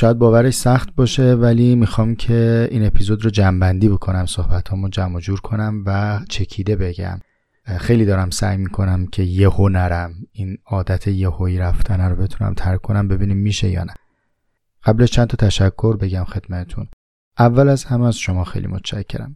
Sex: male